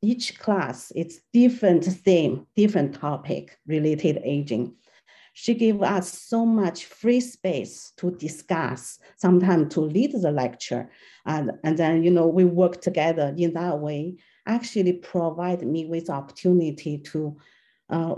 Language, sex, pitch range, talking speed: English, female, 150-185 Hz, 135 wpm